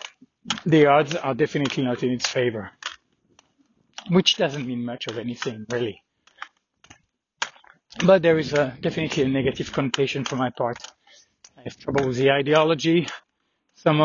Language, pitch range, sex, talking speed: English, 140-180 Hz, male, 140 wpm